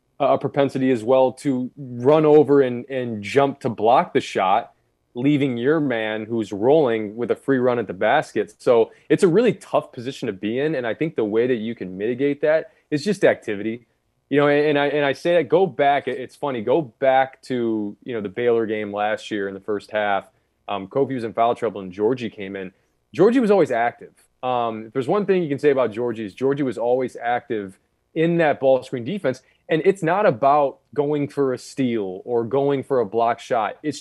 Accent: American